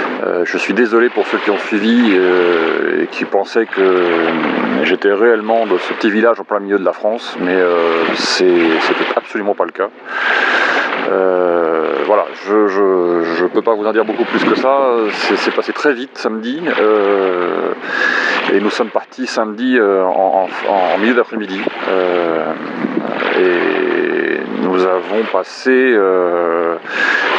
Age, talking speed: 40-59, 155 wpm